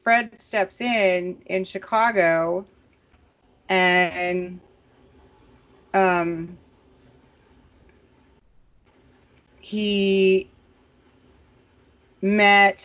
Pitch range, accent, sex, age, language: 160-190 Hz, American, female, 30-49, English